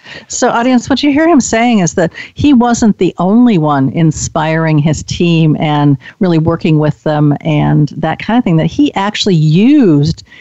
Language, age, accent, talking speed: English, 50-69, American, 180 wpm